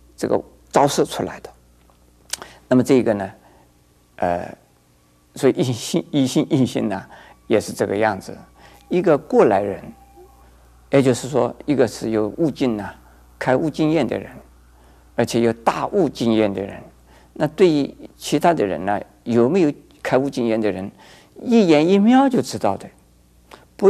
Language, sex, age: Chinese, male, 50-69